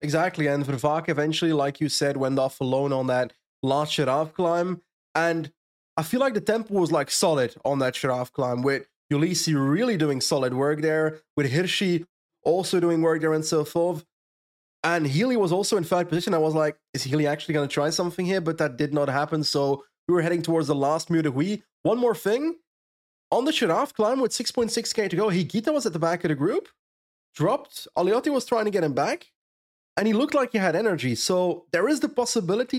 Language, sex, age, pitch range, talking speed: English, male, 20-39, 140-180 Hz, 210 wpm